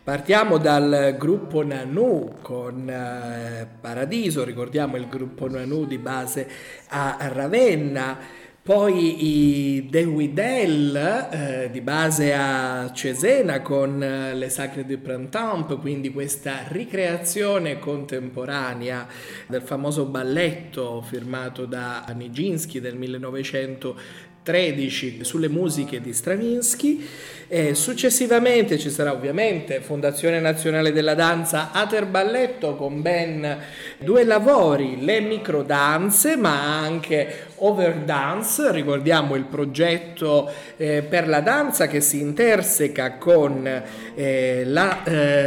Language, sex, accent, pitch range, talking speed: Italian, male, native, 130-170 Hz, 100 wpm